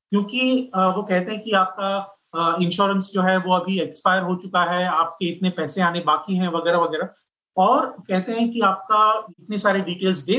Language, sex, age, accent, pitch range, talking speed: Hindi, male, 30-49, native, 170-205 Hz, 185 wpm